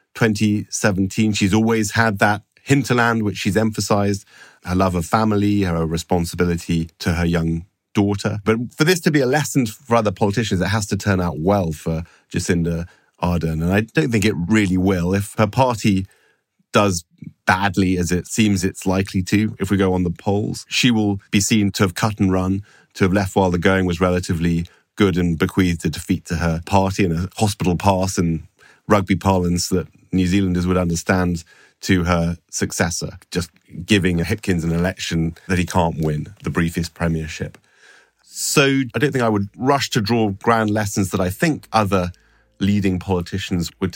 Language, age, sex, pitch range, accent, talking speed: English, 30-49, male, 90-110 Hz, British, 180 wpm